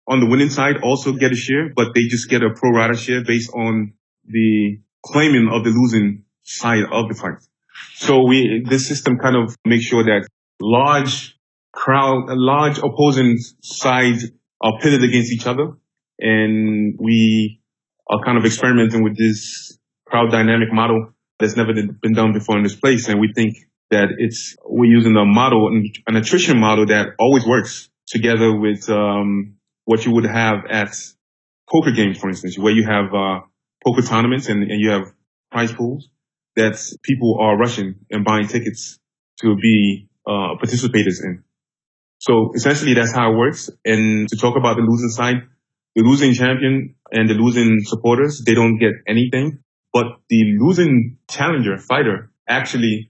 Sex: male